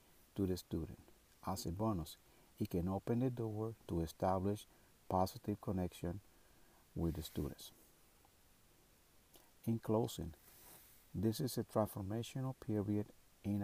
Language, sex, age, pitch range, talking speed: English, male, 50-69, 90-110 Hz, 115 wpm